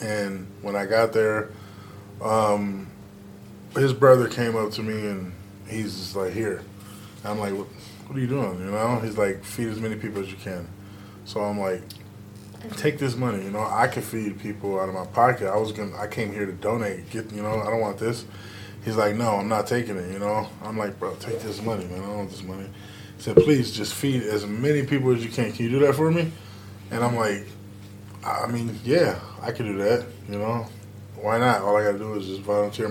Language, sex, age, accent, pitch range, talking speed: English, male, 20-39, American, 100-110 Hz, 230 wpm